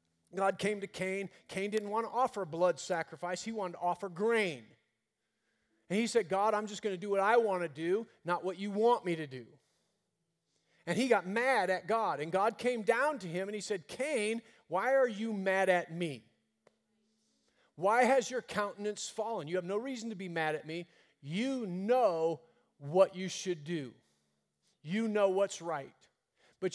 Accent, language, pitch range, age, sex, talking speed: American, English, 165-215 Hz, 40-59, male, 190 wpm